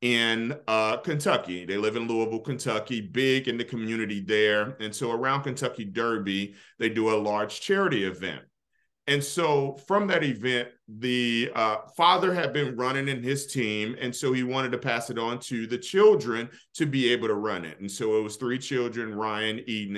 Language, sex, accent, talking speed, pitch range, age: English, male, American, 190 wpm, 110-145 Hz, 40-59